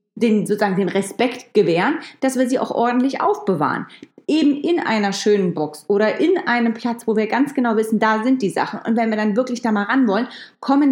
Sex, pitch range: female, 210-265 Hz